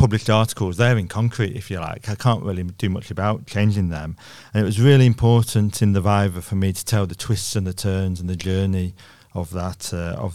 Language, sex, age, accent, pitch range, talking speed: English, male, 40-59, British, 95-115 Hz, 240 wpm